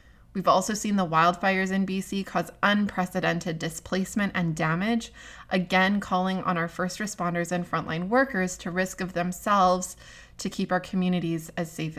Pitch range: 175-200 Hz